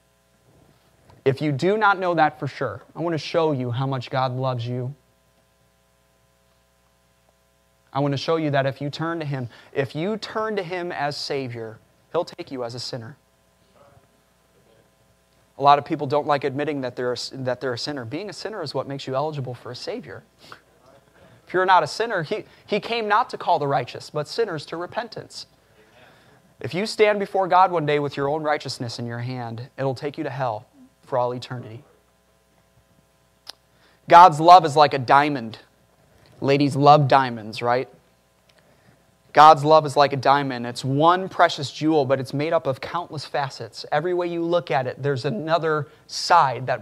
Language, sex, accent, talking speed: English, male, American, 185 wpm